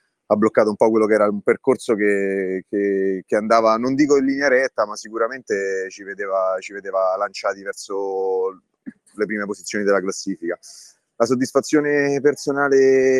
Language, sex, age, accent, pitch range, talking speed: Italian, male, 30-49, native, 95-150 Hz, 155 wpm